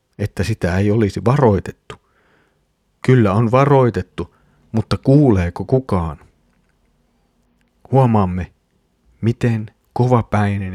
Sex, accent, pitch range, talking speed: male, native, 90-120 Hz, 80 wpm